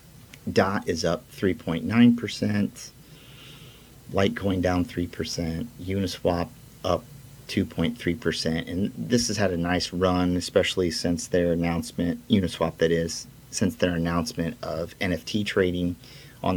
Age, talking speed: 40-59, 110 wpm